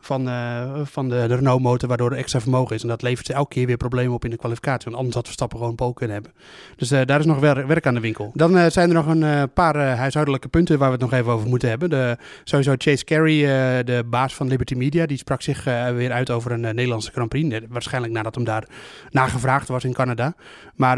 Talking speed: 265 wpm